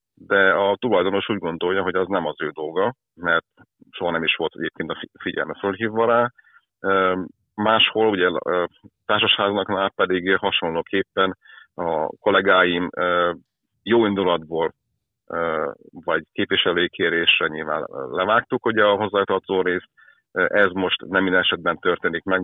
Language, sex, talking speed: Hungarian, male, 135 wpm